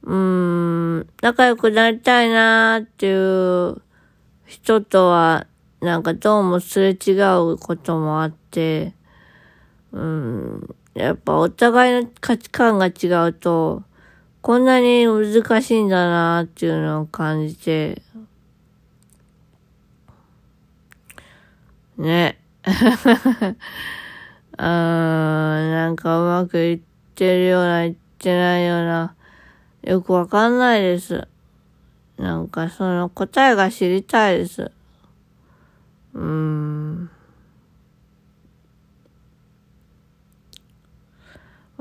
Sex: female